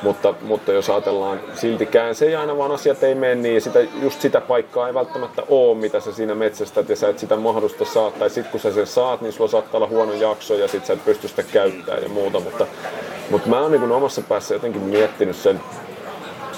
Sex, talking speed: male, 225 wpm